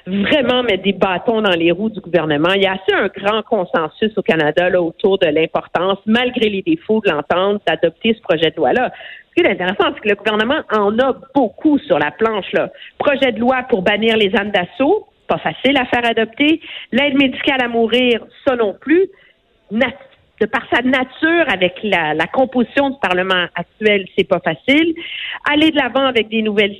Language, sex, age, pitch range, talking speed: French, female, 50-69, 195-265 Hz, 195 wpm